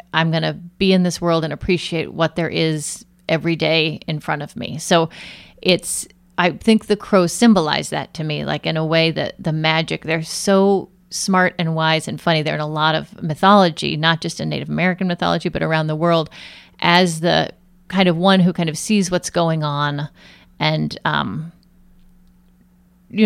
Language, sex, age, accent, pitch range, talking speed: English, female, 30-49, American, 155-180 Hz, 190 wpm